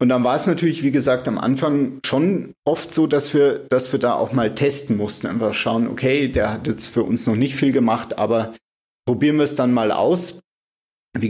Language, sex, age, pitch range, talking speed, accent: German, male, 40-59, 110-135 Hz, 220 wpm, German